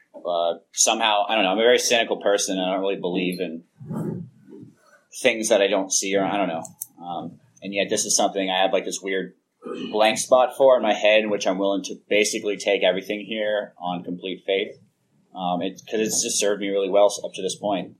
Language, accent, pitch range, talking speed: English, American, 95-115 Hz, 220 wpm